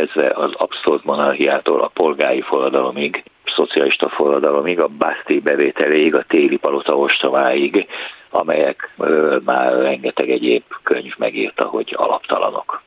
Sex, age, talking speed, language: male, 60-79, 110 wpm, Hungarian